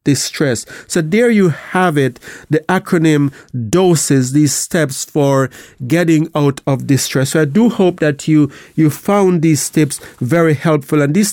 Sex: male